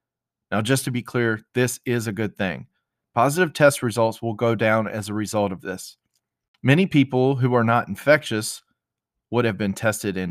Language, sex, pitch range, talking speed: English, male, 100-130 Hz, 185 wpm